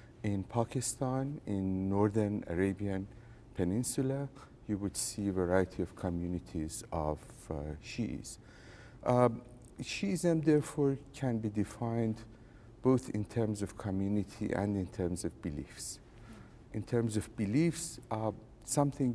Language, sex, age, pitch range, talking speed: English, male, 50-69, 100-120 Hz, 115 wpm